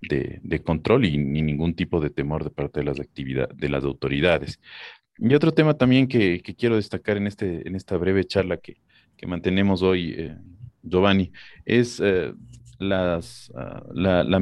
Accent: Mexican